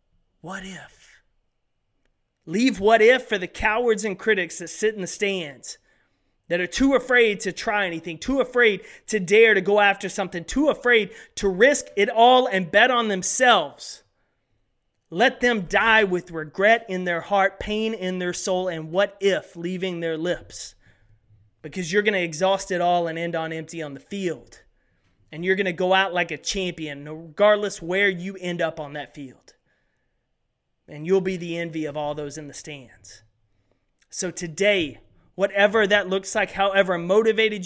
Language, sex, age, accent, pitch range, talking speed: English, male, 30-49, American, 180-230 Hz, 170 wpm